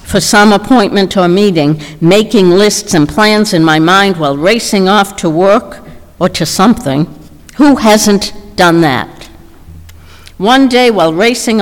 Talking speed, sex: 145 wpm, female